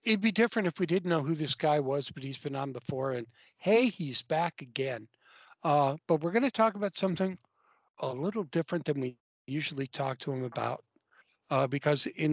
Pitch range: 135-180 Hz